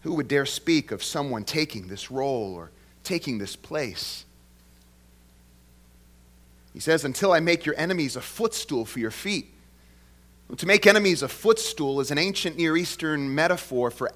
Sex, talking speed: male, 155 wpm